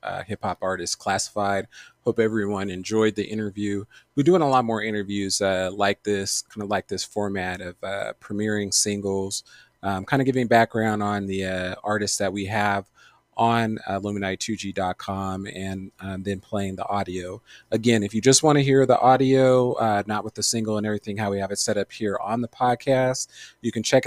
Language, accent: English, American